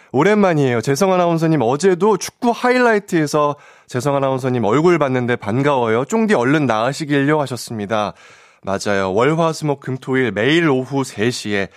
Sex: male